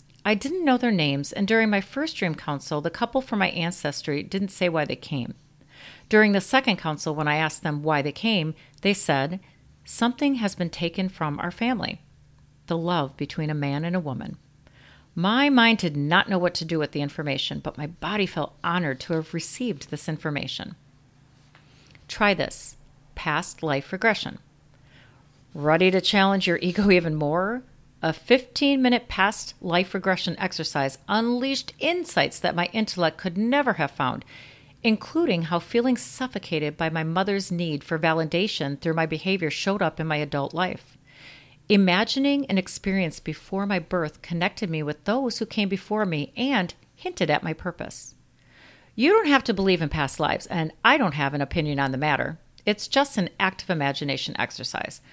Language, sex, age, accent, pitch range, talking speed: English, female, 40-59, American, 150-205 Hz, 170 wpm